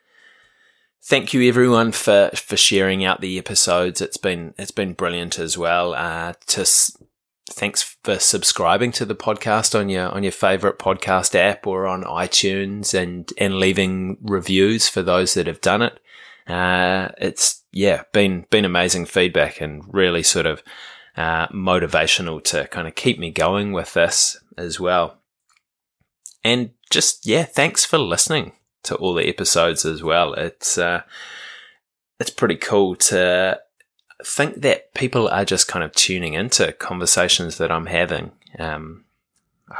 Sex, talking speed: male, 150 wpm